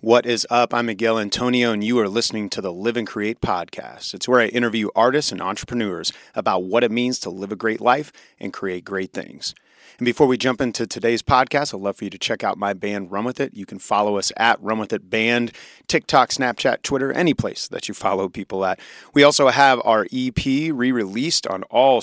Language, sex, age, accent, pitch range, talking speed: English, male, 30-49, American, 105-125 Hz, 225 wpm